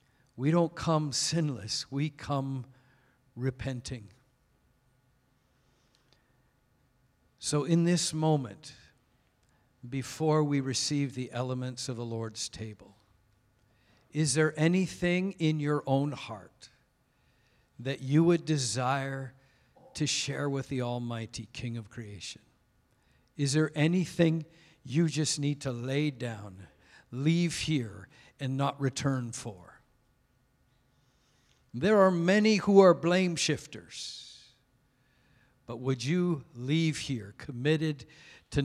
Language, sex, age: English, male, 50-69